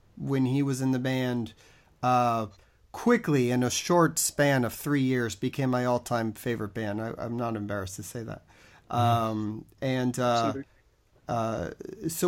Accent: American